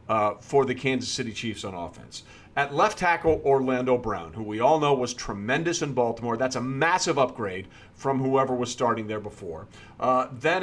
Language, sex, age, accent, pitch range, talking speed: English, male, 40-59, American, 120-155 Hz, 185 wpm